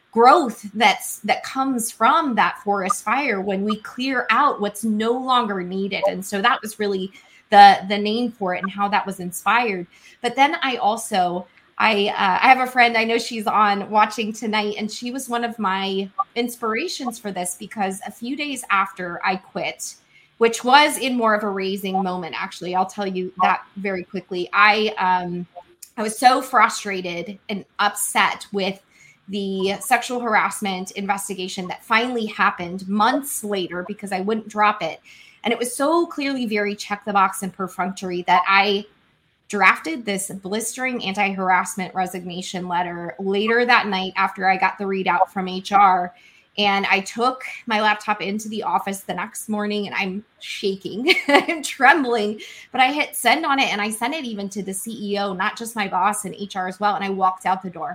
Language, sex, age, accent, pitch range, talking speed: English, female, 20-39, American, 190-230 Hz, 180 wpm